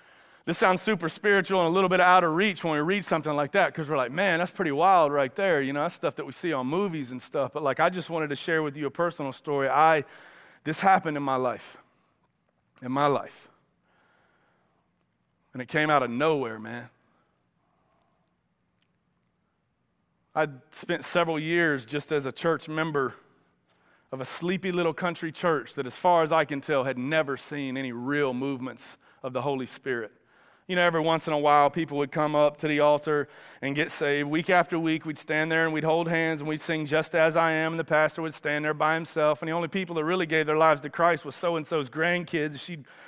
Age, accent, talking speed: 30-49, American, 215 wpm